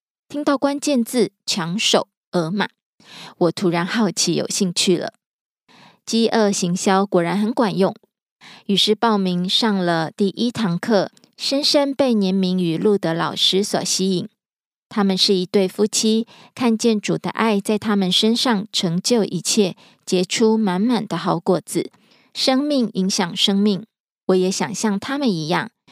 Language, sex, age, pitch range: Korean, female, 20-39, 185-230 Hz